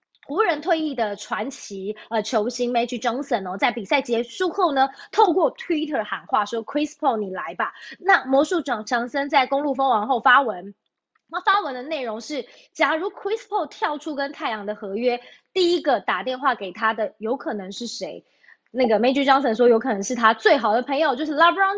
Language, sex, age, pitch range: Chinese, female, 20-39, 220-300 Hz